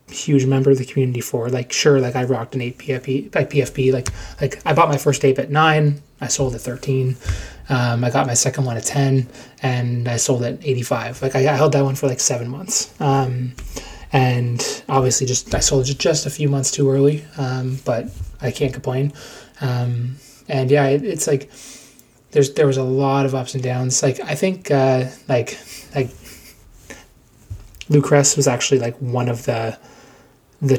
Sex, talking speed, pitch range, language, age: male, 190 wpm, 125-140 Hz, English, 20-39